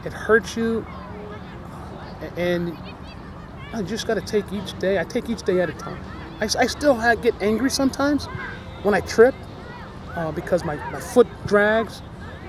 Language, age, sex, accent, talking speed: English, 30-49, male, American, 165 wpm